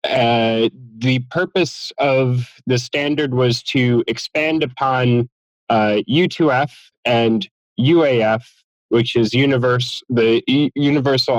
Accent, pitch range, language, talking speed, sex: American, 110-140 Hz, French, 100 wpm, male